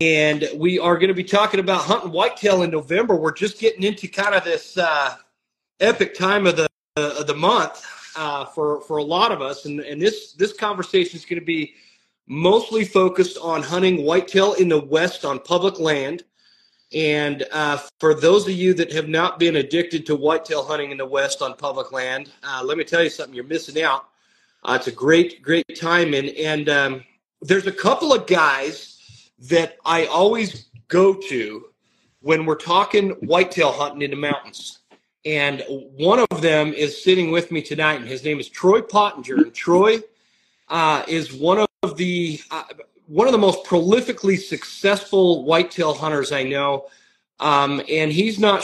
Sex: male